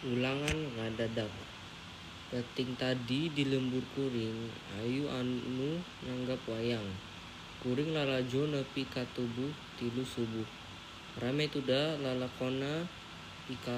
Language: Indonesian